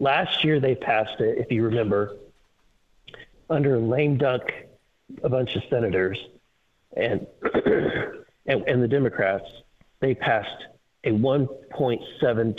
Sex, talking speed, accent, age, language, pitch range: male, 110 wpm, American, 40-59, English, 125-160 Hz